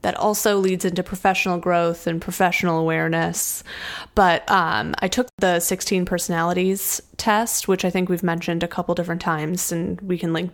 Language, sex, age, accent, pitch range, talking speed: English, female, 20-39, American, 170-195 Hz, 170 wpm